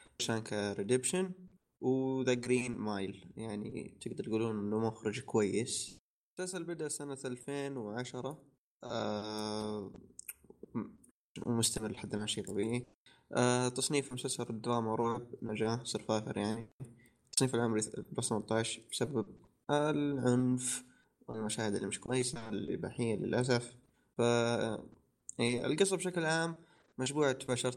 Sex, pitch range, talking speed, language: male, 110-130 Hz, 100 wpm, Arabic